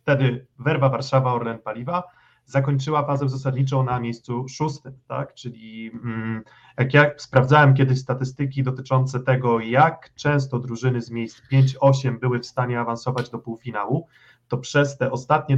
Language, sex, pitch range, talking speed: Polish, male, 125-145 Hz, 140 wpm